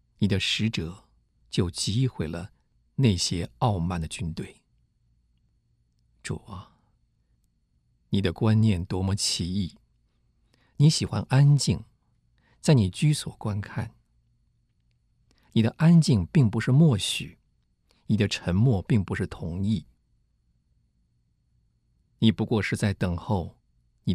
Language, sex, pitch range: Chinese, male, 80-115 Hz